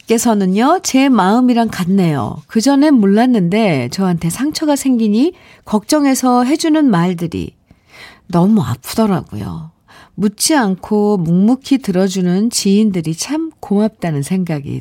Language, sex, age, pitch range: Korean, female, 50-69, 165-245 Hz